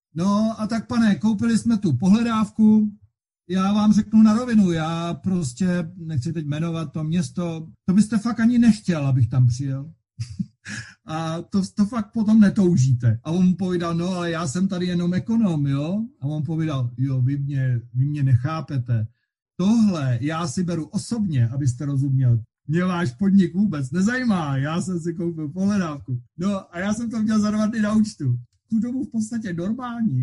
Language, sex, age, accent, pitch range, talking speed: Czech, male, 50-69, native, 135-195 Hz, 170 wpm